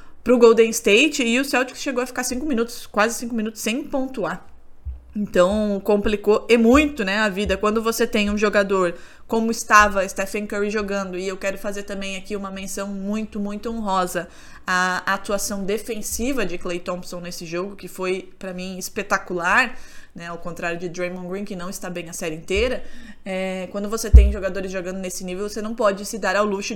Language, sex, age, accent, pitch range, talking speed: Portuguese, female, 20-39, Brazilian, 190-220 Hz, 195 wpm